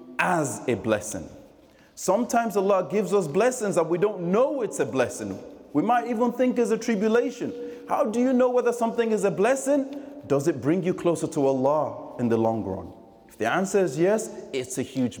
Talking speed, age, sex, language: 195 wpm, 30-49, male, English